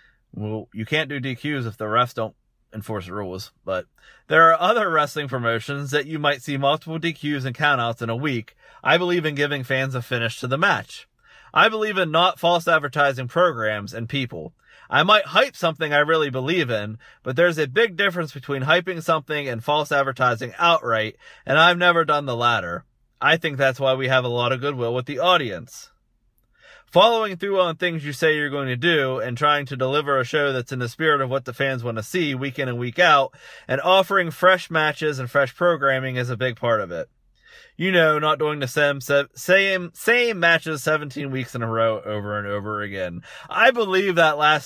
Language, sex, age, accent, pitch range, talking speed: English, male, 30-49, American, 125-165 Hz, 205 wpm